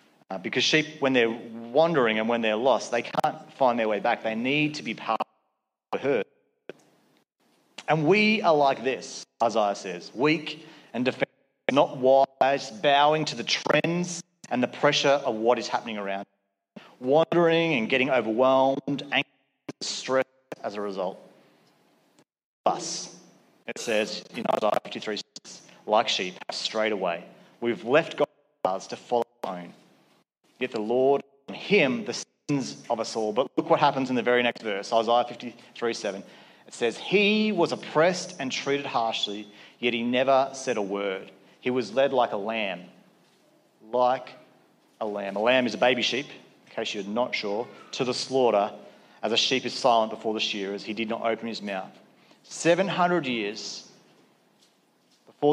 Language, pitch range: English, 115-145 Hz